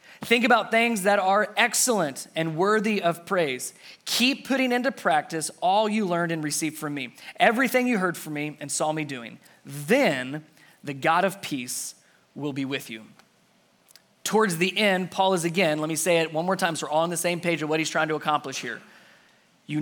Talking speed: 205 wpm